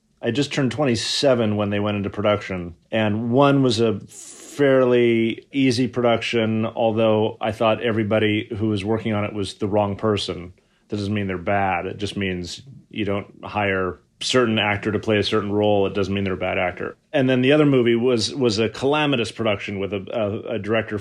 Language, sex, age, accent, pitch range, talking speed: English, male, 30-49, American, 100-120 Hz, 200 wpm